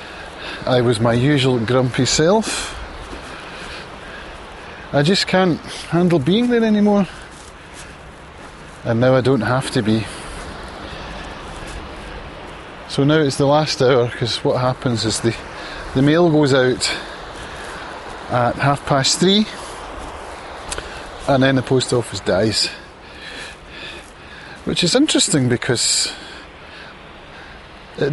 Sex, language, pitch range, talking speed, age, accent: male, English, 105-145 Hz, 105 wpm, 30-49, British